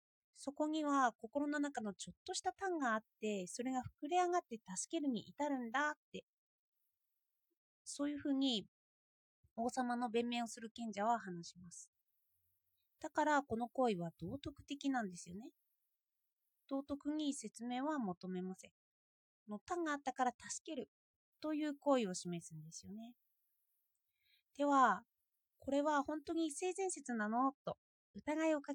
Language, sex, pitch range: Japanese, female, 195-295 Hz